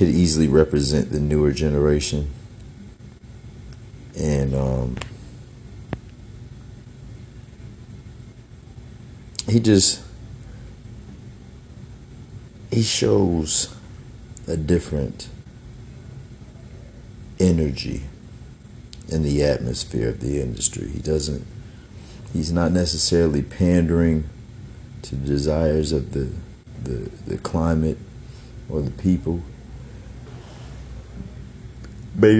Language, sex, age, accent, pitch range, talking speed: English, male, 50-69, American, 75-115 Hz, 70 wpm